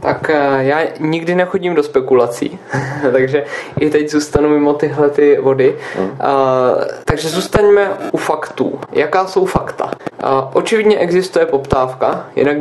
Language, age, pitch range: Czech, 20-39, 135-170 Hz